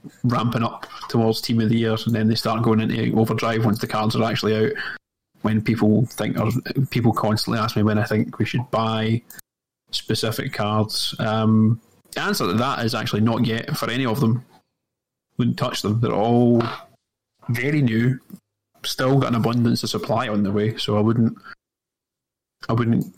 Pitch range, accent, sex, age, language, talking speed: 110-130 Hz, British, male, 20-39, English, 180 wpm